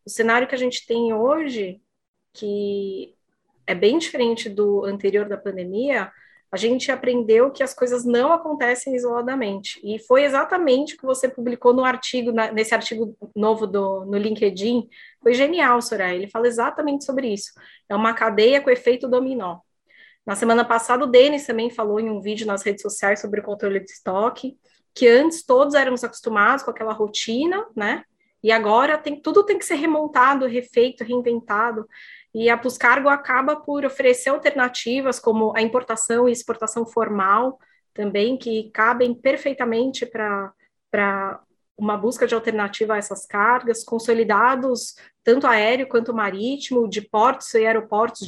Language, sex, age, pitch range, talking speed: Portuguese, female, 20-39, 215-255 Hz, 155 wpm